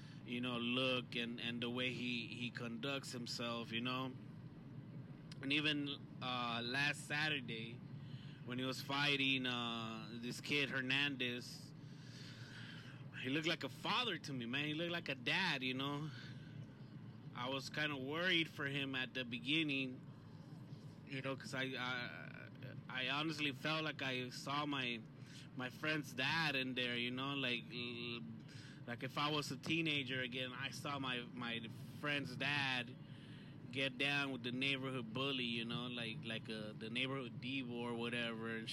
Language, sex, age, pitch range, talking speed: English, male, 20-39, 125-145 Hz, 155 wpm